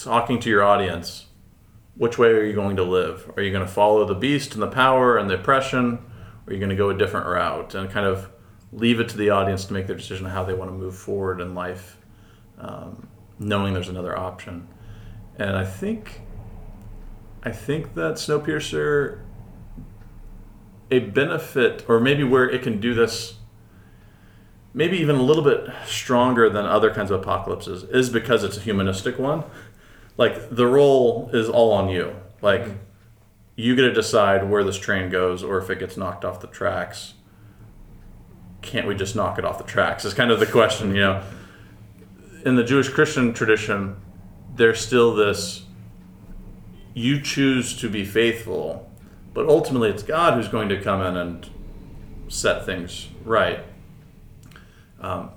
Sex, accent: male, American